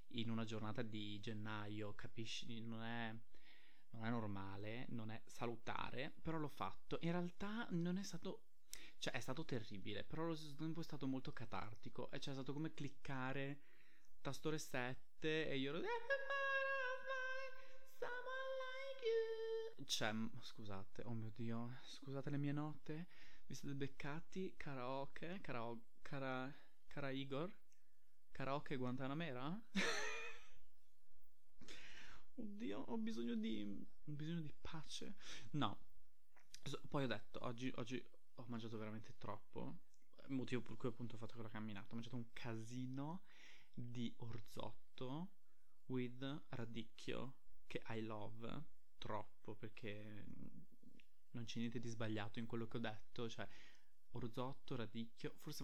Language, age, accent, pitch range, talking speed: Italian, 20-39, native, 115-155 Hz, 130 wpm